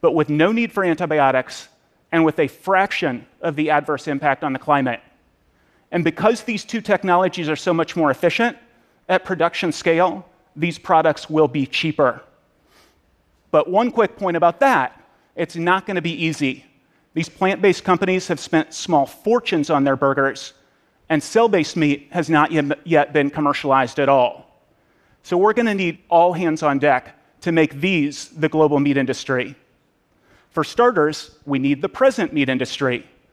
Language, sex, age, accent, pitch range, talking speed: Russian, male, 30-49, American, 145-185 Hz, 160 wpm